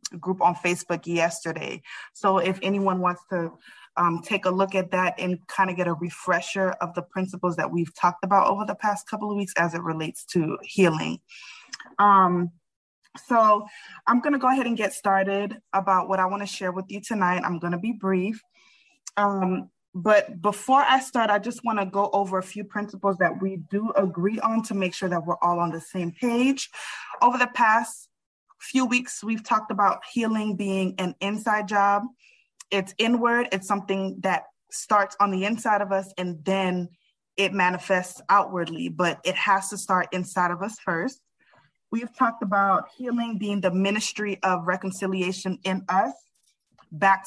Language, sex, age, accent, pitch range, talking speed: English, female, 20-39, American, 180-215 Hz, 180 wpm